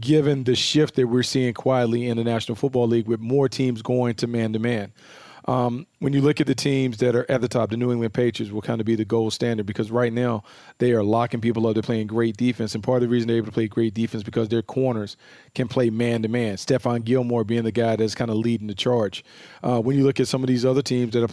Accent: American